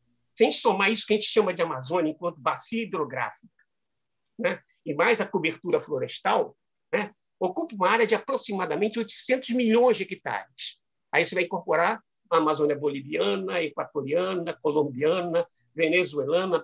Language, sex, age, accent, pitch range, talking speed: Portuguese, male, 60-79, Brazilian, 180-260 Hz, 135 wpm